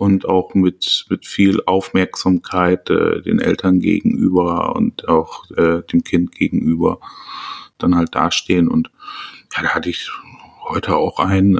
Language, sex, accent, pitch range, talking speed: German, male, German, 90-105 Hz, 140 wpm